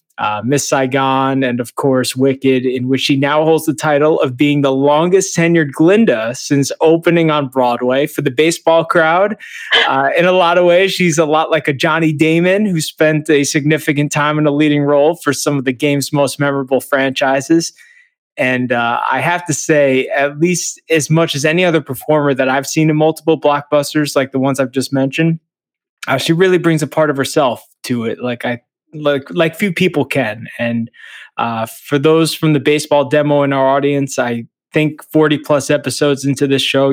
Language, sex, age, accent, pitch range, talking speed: English, male, 20-39, American, 135-160 Hz, 195 wpm